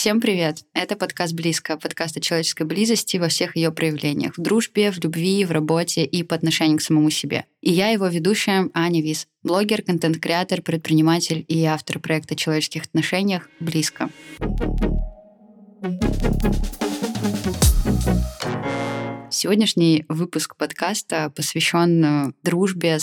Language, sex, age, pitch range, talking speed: Russian, female, 20-39, 155-185 Hz, 115 wpm